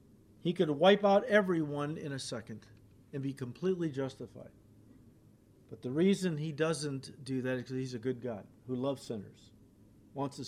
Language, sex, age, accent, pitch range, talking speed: English, male, 50-69, American, 120-160 Hz, 170 wpm